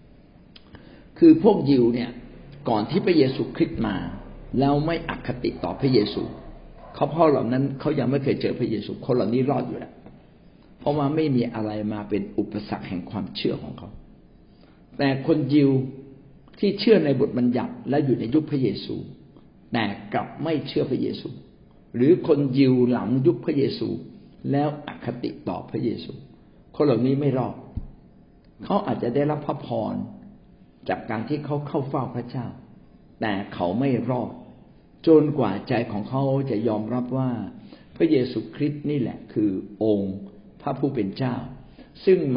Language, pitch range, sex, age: Thai, 115-145 Hz, male, 60-79